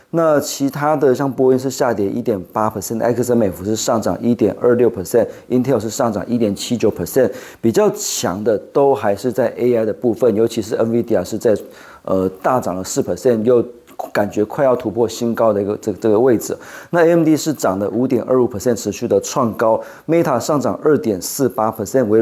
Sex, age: male, 20-39